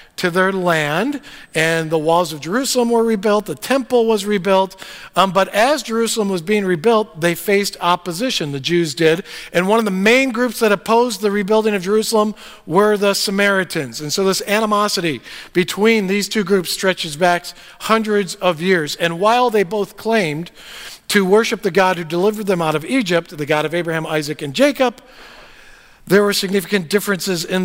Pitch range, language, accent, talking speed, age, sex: 170-210 Hz, English, American, 180 wpm, 50-69, male